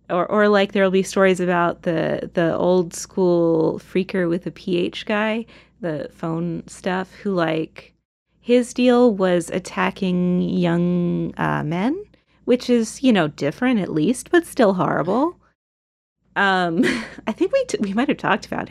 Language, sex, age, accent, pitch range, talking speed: English, female, 30-49, American, 170-220 Hz, 155 wpm